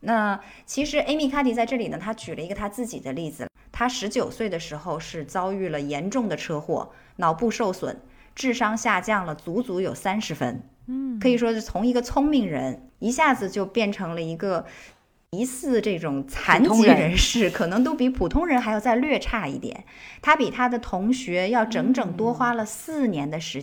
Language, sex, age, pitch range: Chinese, female, 20-39, 185-260 Hz